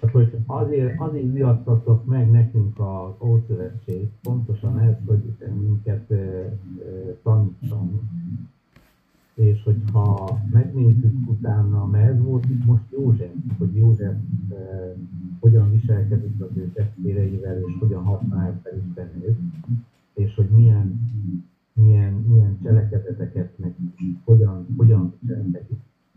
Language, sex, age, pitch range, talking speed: Hungarian, male, 50-69, 95-115 Hz, 115 wpm